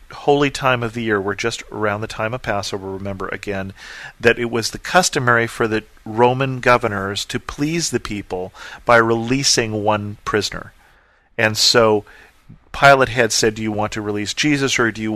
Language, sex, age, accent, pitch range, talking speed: English, male, 40-59, American, 105-130 Hz, 180 wpm